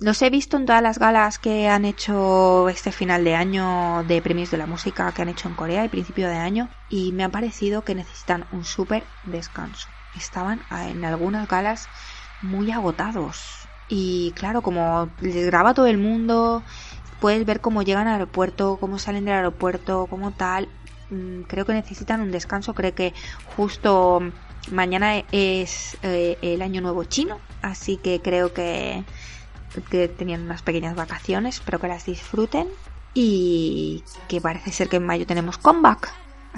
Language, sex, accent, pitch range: Spanish, female, Spanish, 180-220 Hz